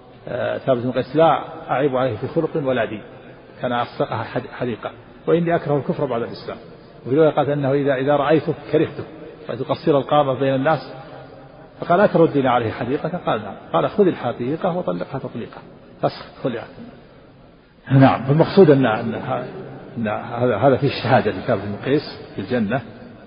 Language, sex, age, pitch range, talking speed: Arabic, male, 50-69, 115-145 Hz, 140 wpm